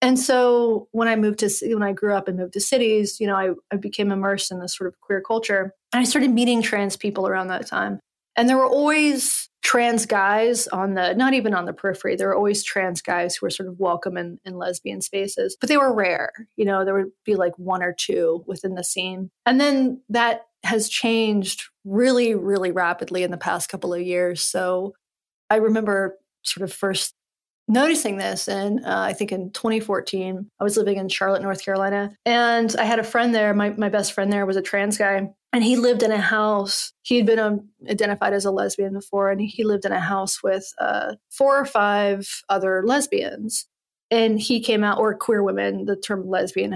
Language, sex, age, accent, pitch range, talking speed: English, female, 30-49, American, 190-230 Hz, 215 wpm